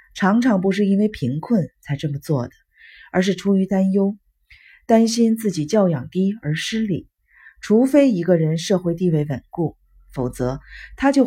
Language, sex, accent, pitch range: Chinese, female, native, 150-210 Hz